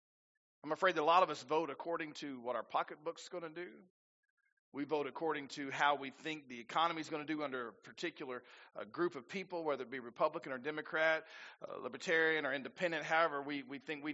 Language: English